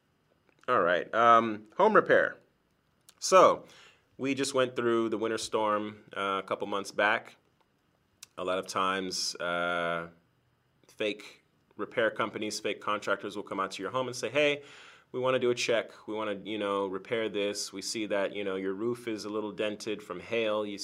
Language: English